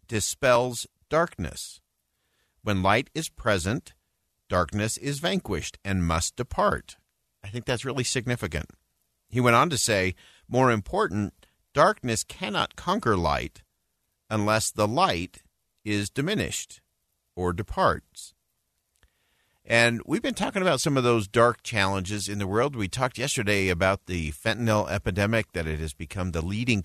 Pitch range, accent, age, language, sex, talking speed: 90-115 Hz, American, 50-69, English, male, 135 wpm